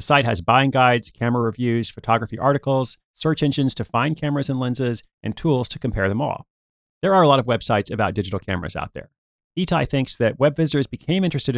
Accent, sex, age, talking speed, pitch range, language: American, male, 30-49, 205 wpm, 110-140 Hz, English